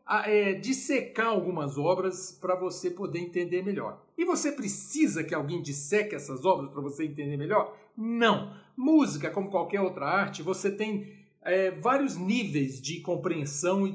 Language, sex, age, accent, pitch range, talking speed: Portuguese, male, 50-69, Brazilian, 175-260 Hz, 140 wpm